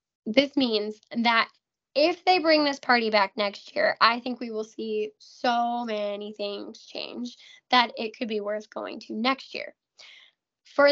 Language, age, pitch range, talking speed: English, 10-29, 230-290 Hz, 165 wpm